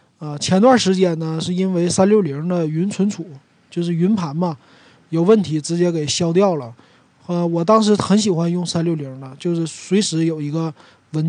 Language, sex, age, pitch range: Chinese, male, 20-39, 155-185 Hz